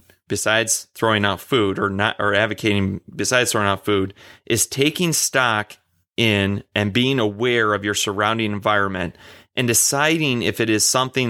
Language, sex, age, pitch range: English, male, 30-49, 100-130 Hz